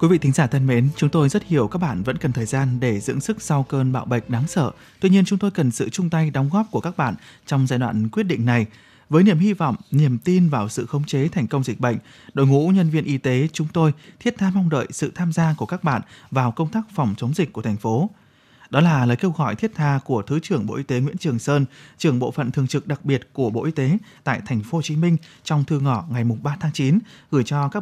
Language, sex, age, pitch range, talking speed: Vietnamese, male, 20-39, 125-170 Hz, 275 wpm